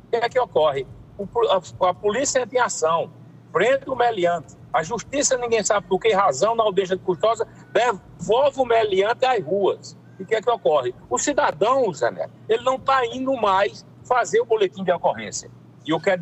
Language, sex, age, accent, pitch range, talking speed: Portuguese, male, 60-79, Brazilian, 190-265 Hz, 190 wpm